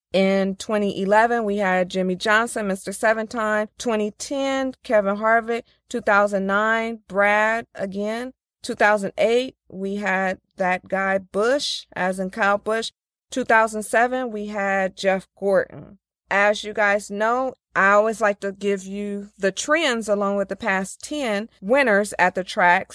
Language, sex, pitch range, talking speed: English, female, 190-230 Hz, 130 wpm